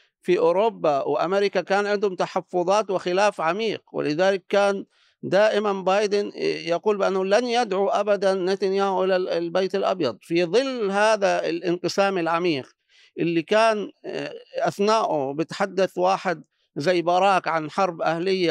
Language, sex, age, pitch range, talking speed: Arabic, male, 50-69, 185-230 Hz, 115 wpm